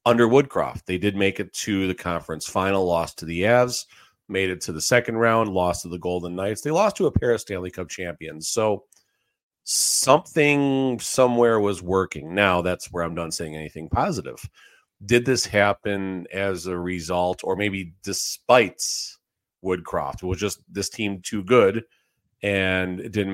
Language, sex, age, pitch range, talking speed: English, male, 40-59, 90-110 Hz, 170 wpm